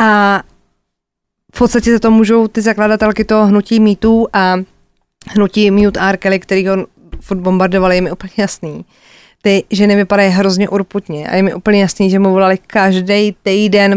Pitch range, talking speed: 195-230 Hz, 155 wpm